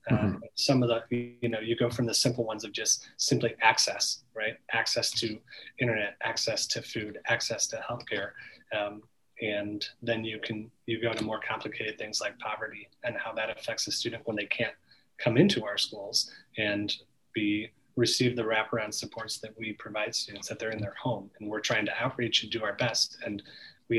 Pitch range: 105-120 Hz